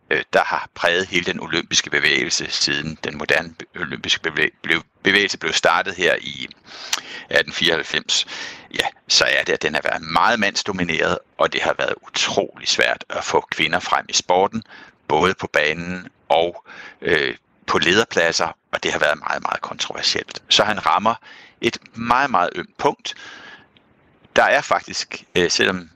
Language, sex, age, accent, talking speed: Danish, male, 60-79, native, 150 wpm